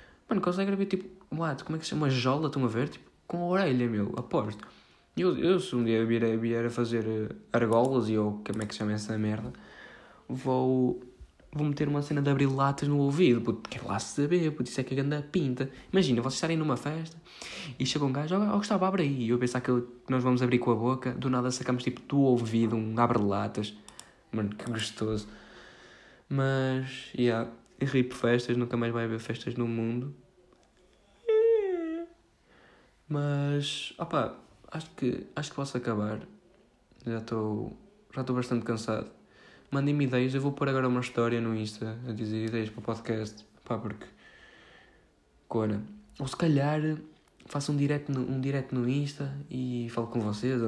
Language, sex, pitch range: Portuguese, male, 115-145 Hz